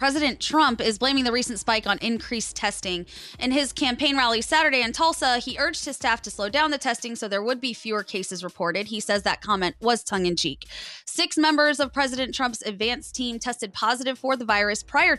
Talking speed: 215 wpm